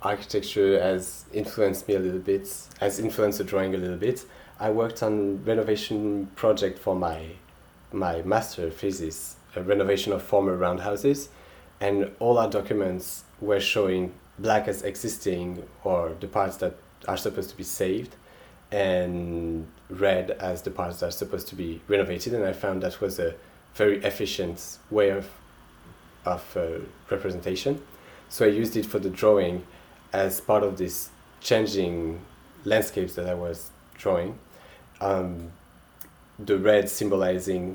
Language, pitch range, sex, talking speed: English, 90-105 Hz, male, 145 wpm